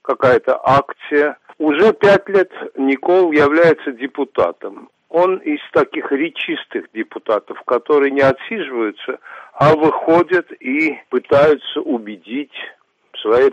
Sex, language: male, Russian